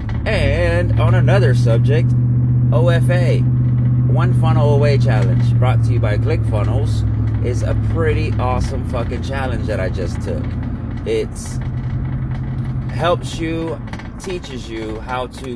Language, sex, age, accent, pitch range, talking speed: English, male, 30-49, American, 110-125 Hz, 120 wpm